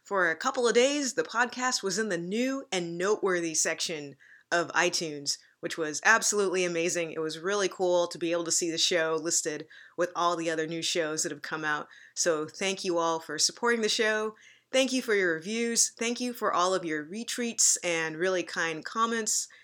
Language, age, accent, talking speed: English, 20-39, American, 200 wpm